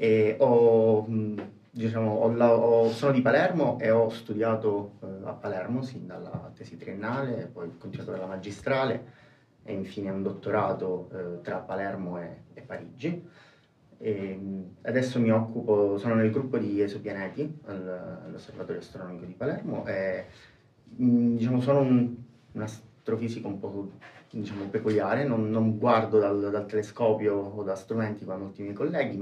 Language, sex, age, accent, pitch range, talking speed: Italian, male, 30-49, native, 100-120 Hz, 145 wpm